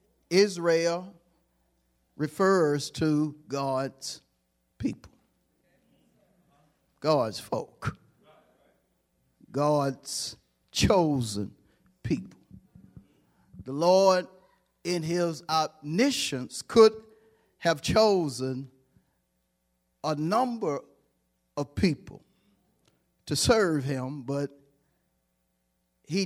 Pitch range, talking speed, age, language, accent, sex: 120-175 Hz, 60 wpm, 50-69, English, American, male